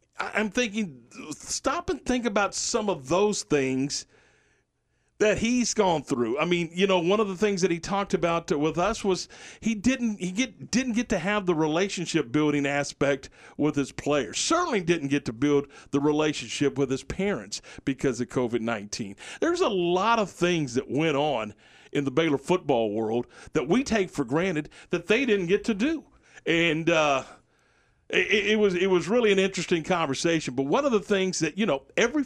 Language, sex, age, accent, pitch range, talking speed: English, male, 40-59, American, 145-205 Hz, 190 wpm